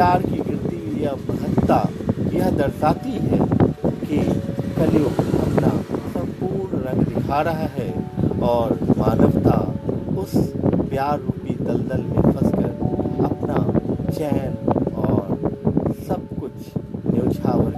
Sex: male